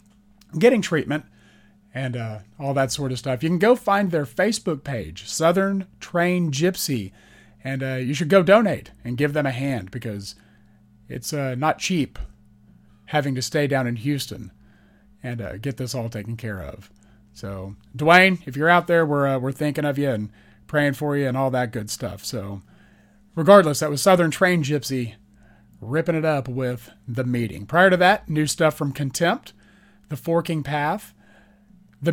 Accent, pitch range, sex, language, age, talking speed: American, 110-175 Hz, male, English, 40-59, 175 wpm